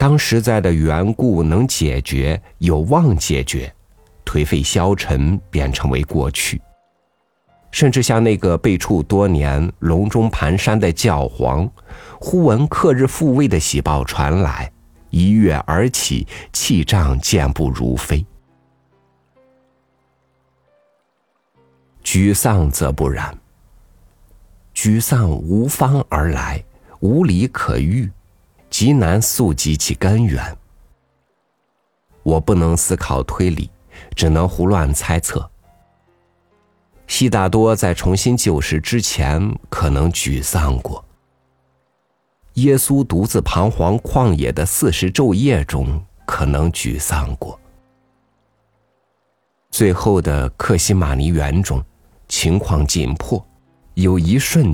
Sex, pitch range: male, 75-105 Hz